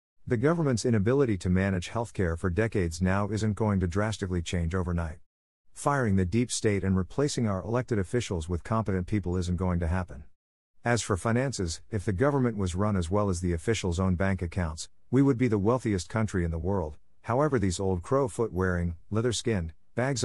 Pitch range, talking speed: 90-115 Hz, 185 wpm